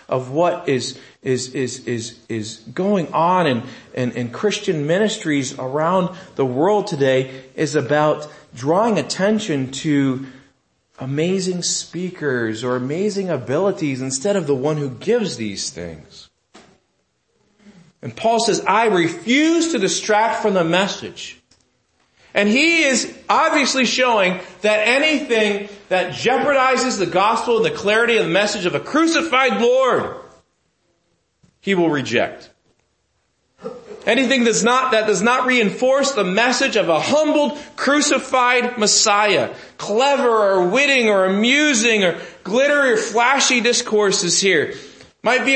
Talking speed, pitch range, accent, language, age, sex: 130 wpm, 150-240 Hz, American, English, 40-59, male